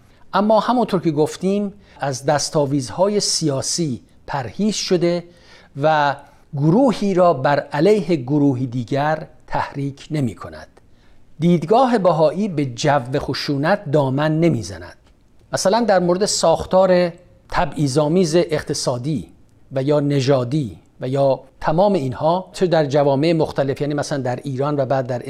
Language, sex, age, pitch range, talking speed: Persian, male, 50-69, 140-180 Hz, 120 wpm